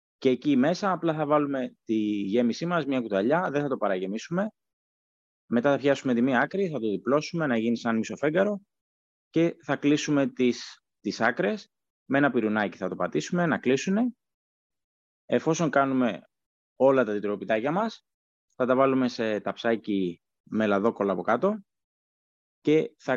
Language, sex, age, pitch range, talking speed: Greek, male, 20-39, 105-155 Hz, 155 wpm